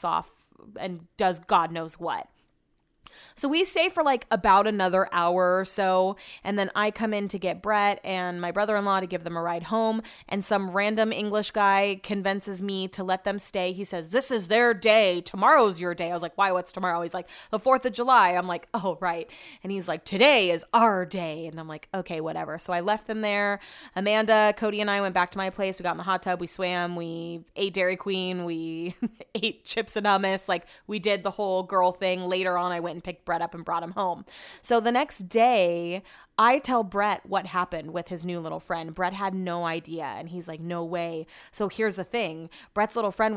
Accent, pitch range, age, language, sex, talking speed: American, 175-210 Hz, 20-39, English, female, 220 wpm